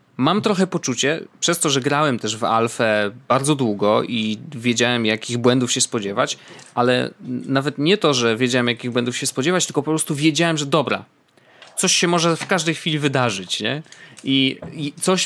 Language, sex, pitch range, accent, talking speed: Polish, male, 130-170 Hz, native, 175 wpm